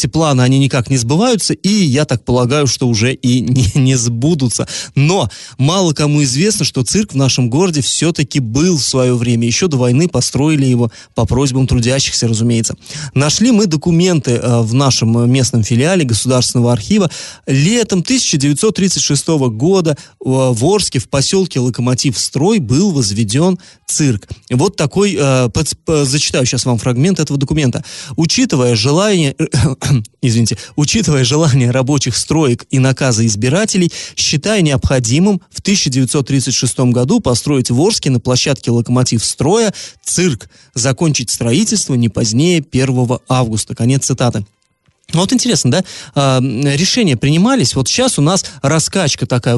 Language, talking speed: Russian, 135 wpm